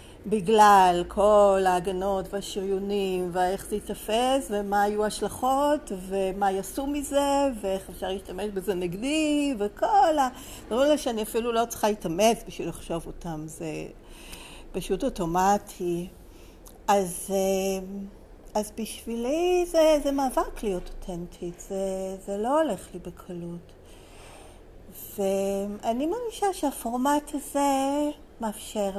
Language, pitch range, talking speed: Hebrew, 195-265 Hz, 85 wpm